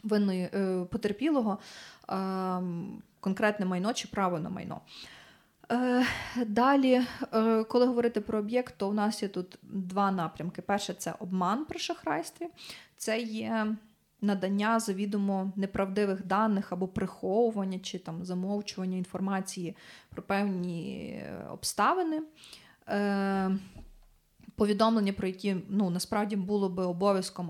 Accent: native